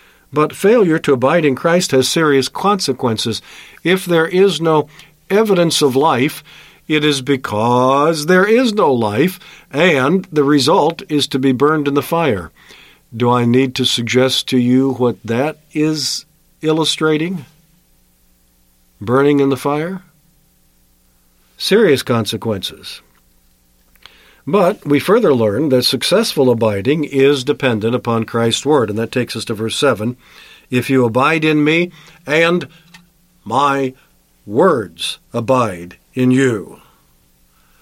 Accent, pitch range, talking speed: American, 115-155 Hz, 125 wpm